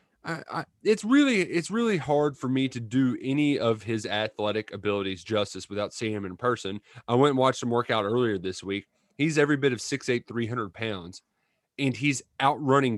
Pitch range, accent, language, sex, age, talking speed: 105-140 Hz, American, English, male, 30-49, 210 wpm